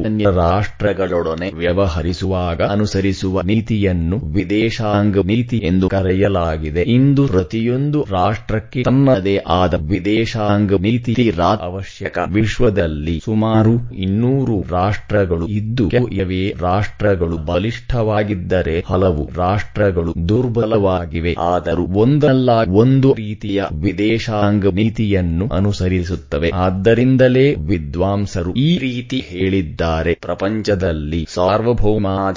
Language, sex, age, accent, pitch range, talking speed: English, male, 30-49, Indian, 90-110 Hz, 80 wpm